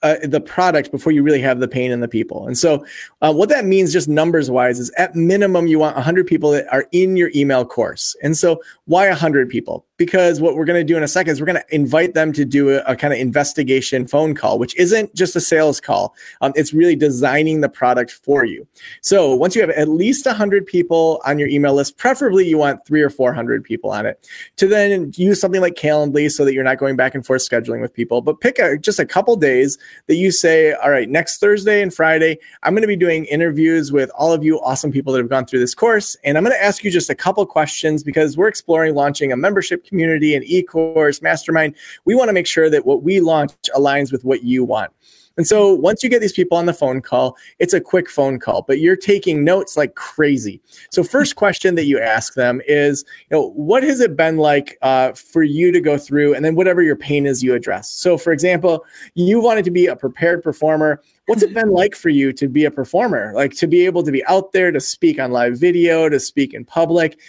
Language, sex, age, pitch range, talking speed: English, male, 30-49, 140-180 Hz, 245 wpm